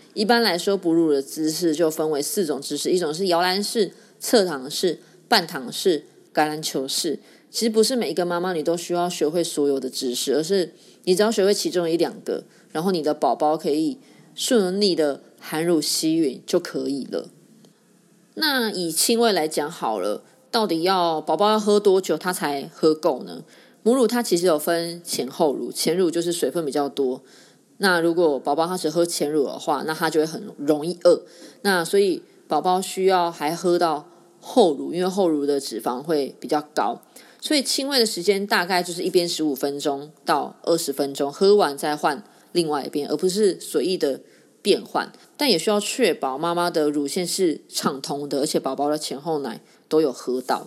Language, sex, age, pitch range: Chinese, female, 20-39, 155-205 Hz